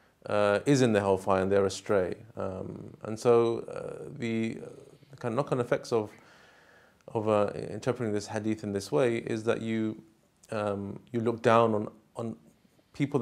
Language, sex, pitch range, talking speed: English, male, 100-120 Hz, 170 wpm